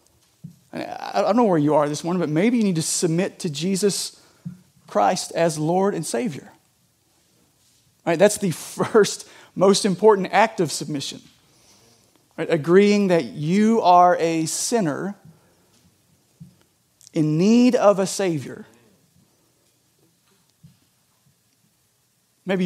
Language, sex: English, male